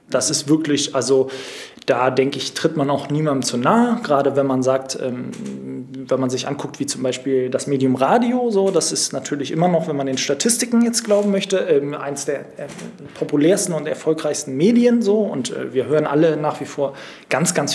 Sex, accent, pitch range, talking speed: male, German, 135-165 Hz, 205 wpm